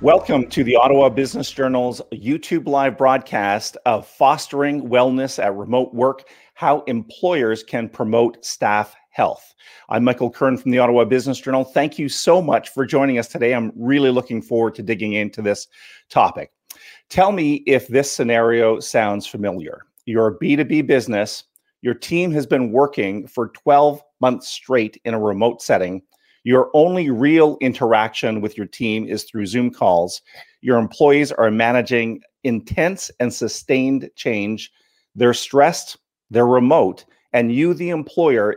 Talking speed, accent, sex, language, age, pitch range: 150 wpm, American, male, English, 40-59, 115-145 Hz